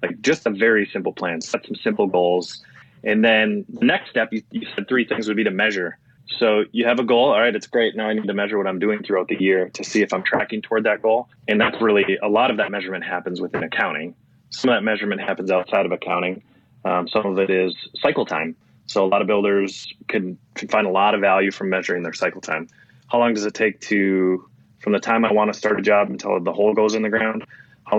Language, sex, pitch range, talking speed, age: English, male, 95-110 Hz, 255 wpm, 20-39